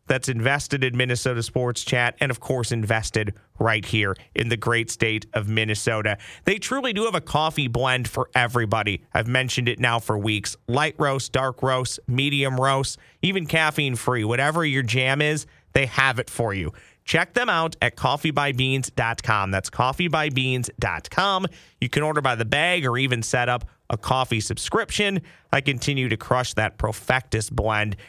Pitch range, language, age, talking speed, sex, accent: 115-150 Hz, English, 40-59, 165 wpm, male, American